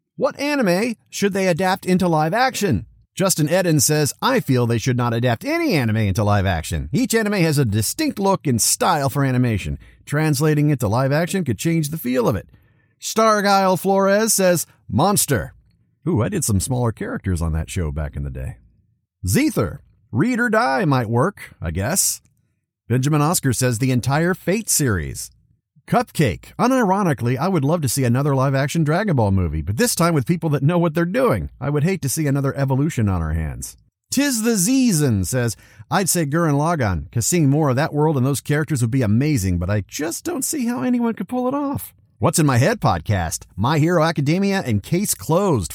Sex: male